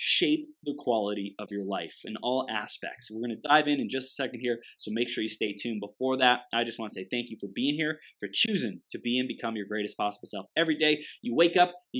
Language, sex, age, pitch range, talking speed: English, male, 20-39, 110-155 Hz, 265 wpm